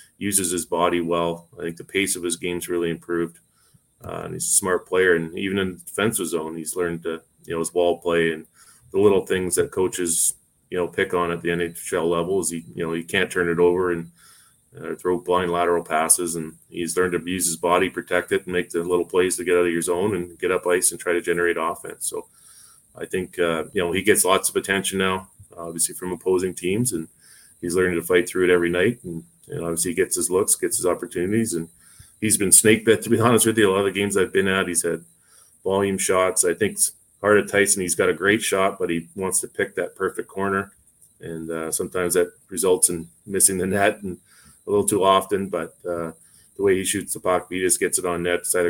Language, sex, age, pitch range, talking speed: English, male, 20-39, 85-95 Hz, 240 wpm